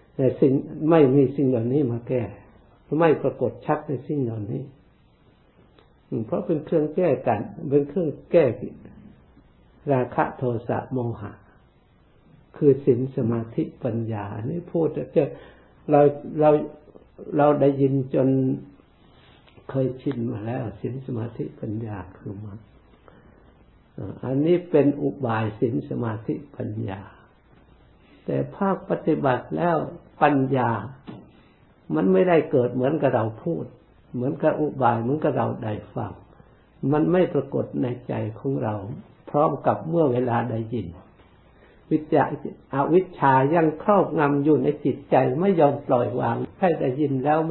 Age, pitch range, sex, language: 60-79, 115-150 Hz, male, Thai